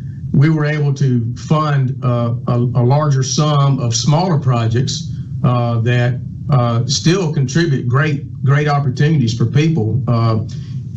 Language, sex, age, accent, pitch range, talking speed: English, male, 40-59, American, 120-140 Hz, 130 wpm